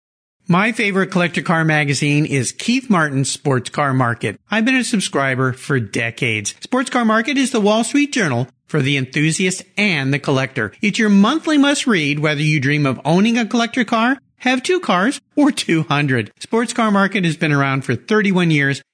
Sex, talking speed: male, 180 wpm